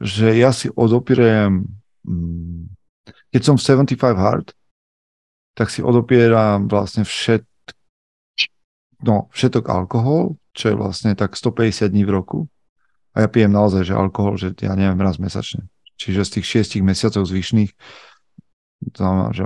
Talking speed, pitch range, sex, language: 130 wpm, 100-125 Hz, male, Slovak